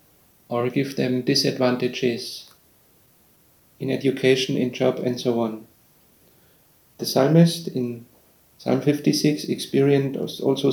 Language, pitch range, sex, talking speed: English, 120-140 Hz, male, 100 wpm